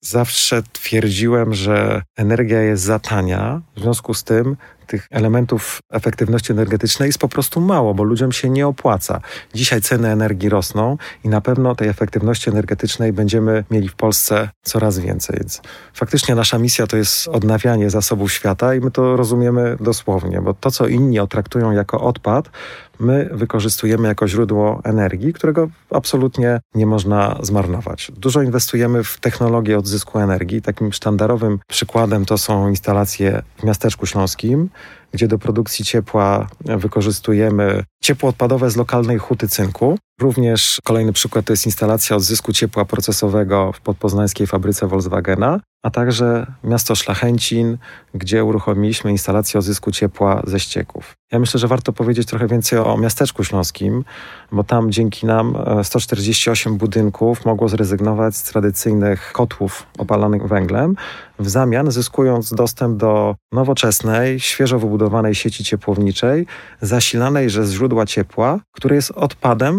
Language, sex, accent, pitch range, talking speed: Polish, male, native, 105-120 Hz, 140 wpm